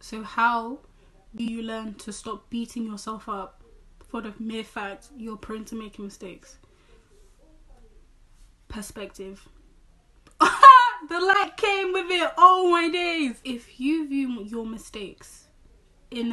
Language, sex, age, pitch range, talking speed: English, female, 10-29, 210-240 Hz, 125 wpm